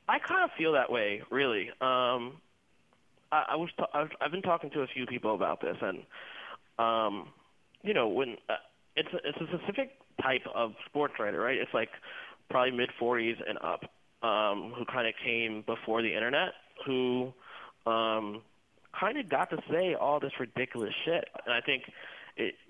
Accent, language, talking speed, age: American, English, 180 wpm, 20-39